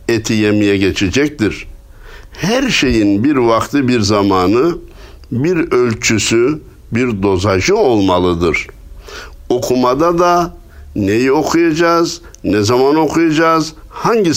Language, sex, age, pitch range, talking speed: Turkish, male, 60-79, 100-140 Hz, 90 wpm